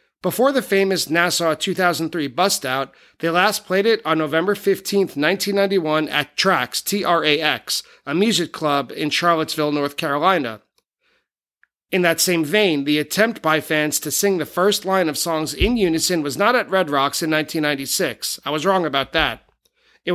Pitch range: 150-195 Hz